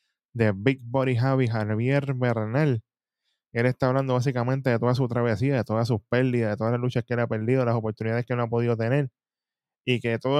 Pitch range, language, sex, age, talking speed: 115-135 Hz, Spanish, male, 10-29, 210 wpm